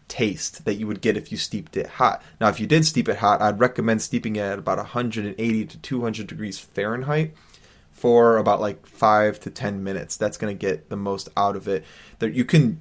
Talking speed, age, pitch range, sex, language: 220 wpm, 20-39, 100-115 Hz, male, English